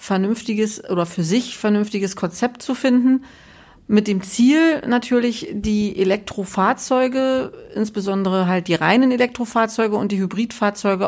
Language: German